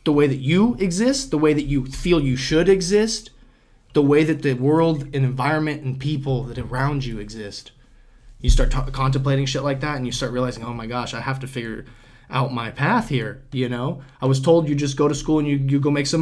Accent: American